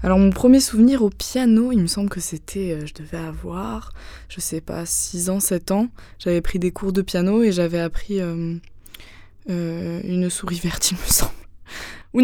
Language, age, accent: French, 20-39, French